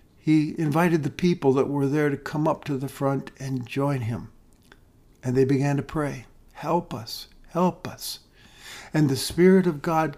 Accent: American